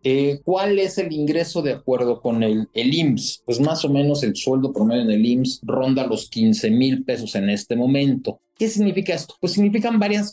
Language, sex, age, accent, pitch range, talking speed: Spanish, male, 40-59, Mexican, 130-185 Hz, 205 wpm